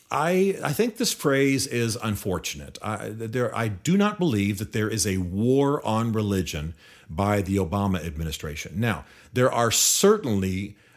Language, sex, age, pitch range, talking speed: English, male, 40-59, 100-125 Hz, 155 wpm